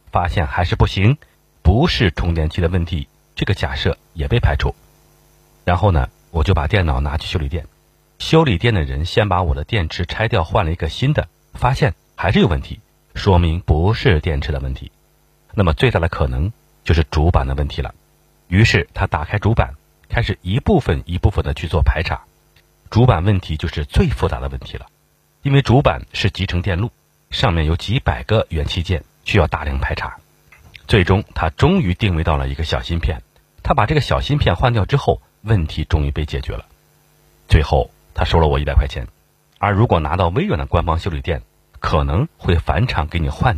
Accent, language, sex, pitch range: native, Chinese, male, 75-100 Hz